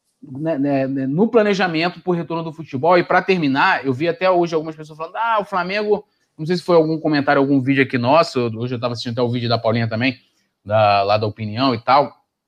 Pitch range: 135-180 Hz